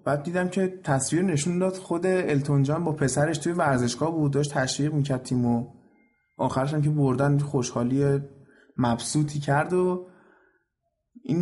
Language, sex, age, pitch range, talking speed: Persian, male, 20-39, 125-150 Hz, 130 wpm